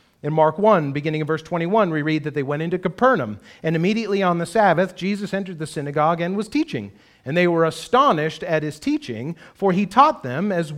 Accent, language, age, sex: American, English, 40-59, male